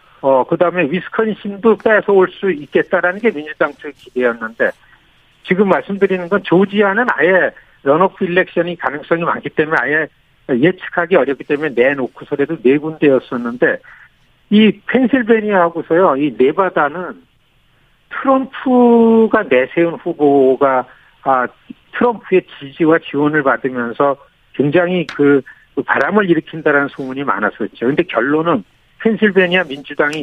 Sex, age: male, 60-79